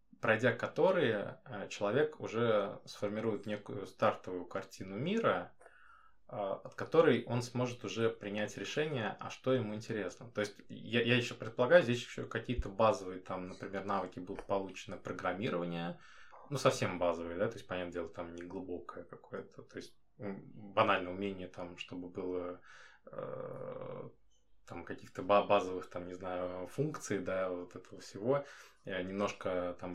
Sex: male